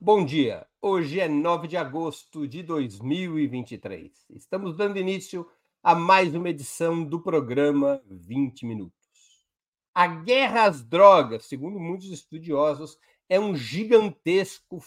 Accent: Brazilian